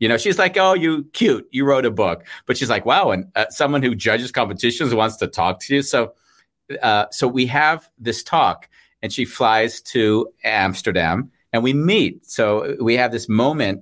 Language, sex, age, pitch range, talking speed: English, male, 40-59, 100-130 Hz, 200 wpm